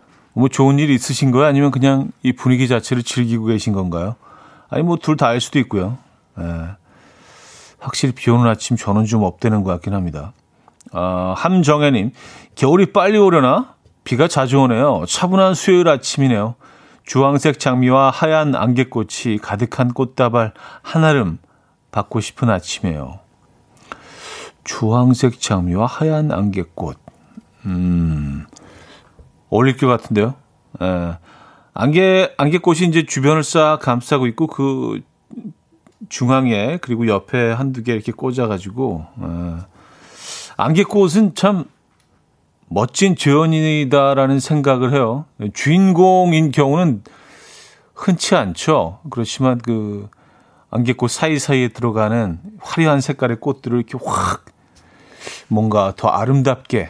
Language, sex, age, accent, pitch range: Korean, male, 40-59, native, 110-155 Hz